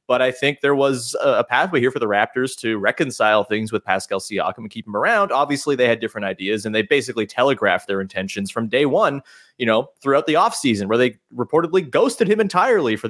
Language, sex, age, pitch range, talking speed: English, male, 30-49, 110-155 Hz, 215 wpm